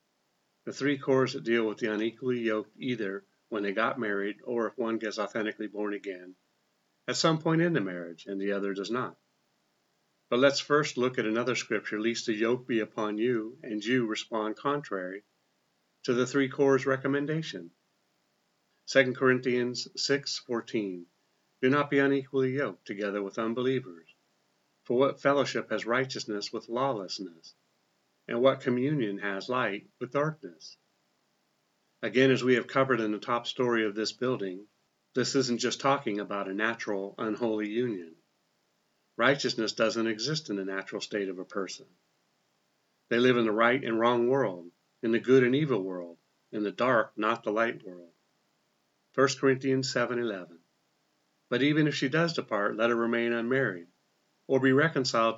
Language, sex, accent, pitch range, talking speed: English, male, American, 105-130 Hz, 160 wpm